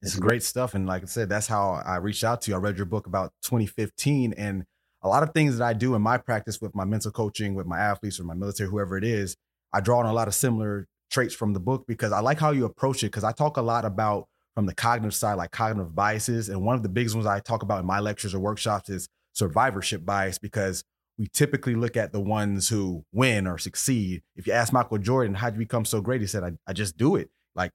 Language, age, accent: English, 30-49, American